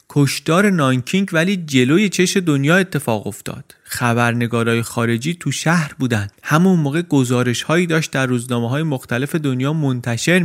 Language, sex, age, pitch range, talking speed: Persian, male, 30-49, 115-155 Hz, 140 wpm